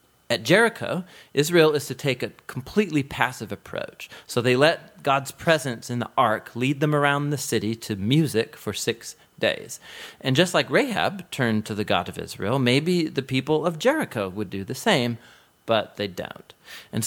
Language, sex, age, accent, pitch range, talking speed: English, male, 40-59, American, 105-145 Hz, 180 wpm